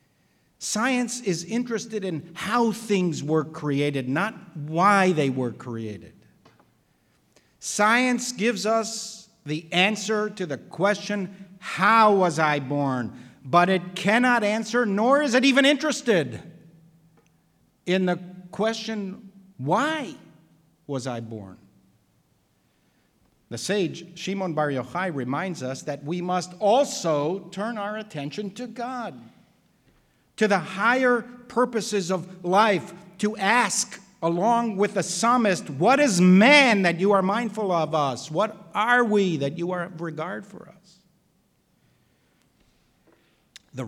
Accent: American